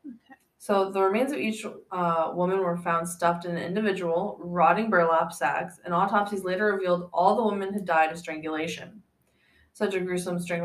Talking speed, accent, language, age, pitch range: 175 wpm, American, English, 20-39, 170-205 Hz